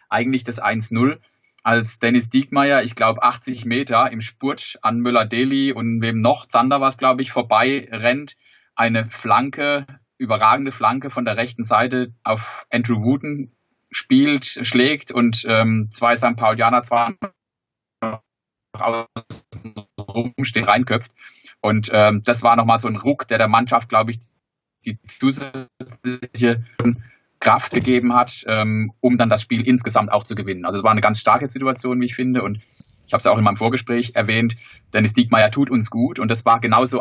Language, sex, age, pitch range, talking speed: German, male, 30-49, 110-125 Hz, 160 wpm